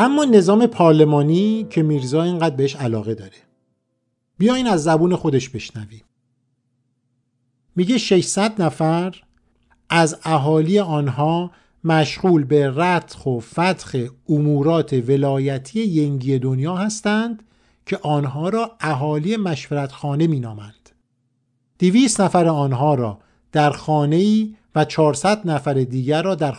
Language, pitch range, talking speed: Persian, 130-175 Hz, 115 wpm